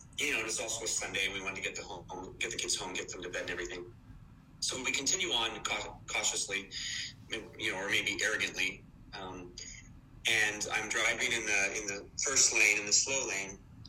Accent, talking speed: American, 210 wpm